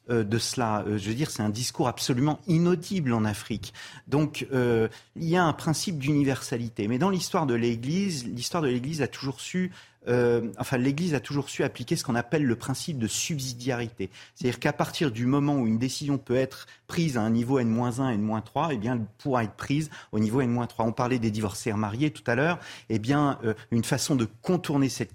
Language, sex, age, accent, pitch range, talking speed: French, male, 30-49, French, 115-145 Hz, 210 wpm